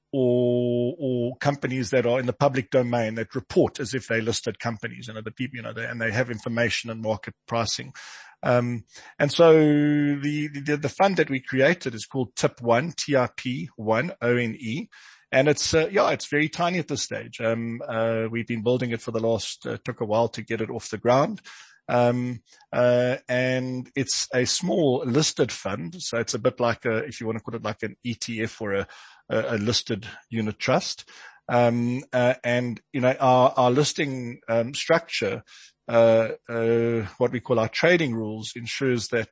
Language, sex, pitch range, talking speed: English, male, 115-135 Hz, 190 wpm